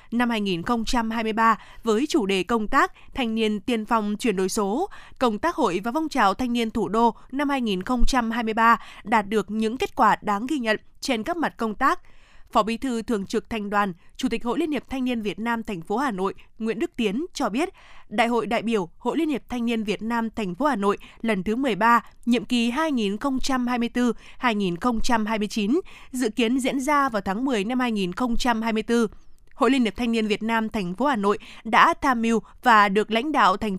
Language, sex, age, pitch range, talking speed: Vietnamese, female, 20-39, 215-255 Hz, 200 wpm